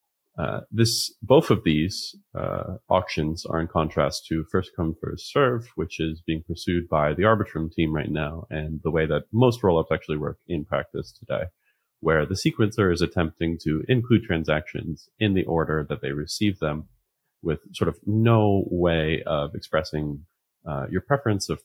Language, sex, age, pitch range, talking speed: English, male, 30-49, 80-105 Hz, 170 wpm